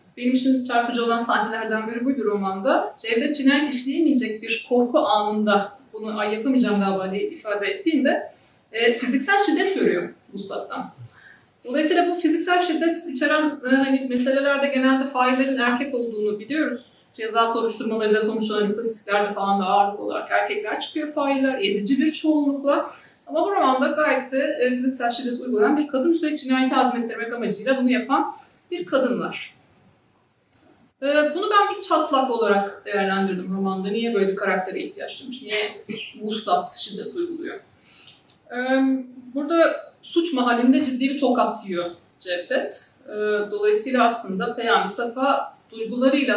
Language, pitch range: Turkish, 215-280 Hz